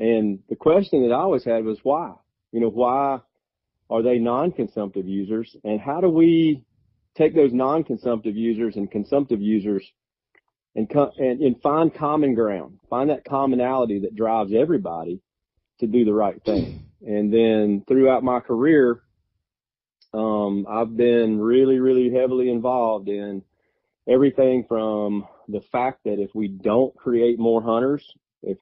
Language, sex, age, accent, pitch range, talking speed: English, male, 30-49, American, 105-125 Hz, 145 wpm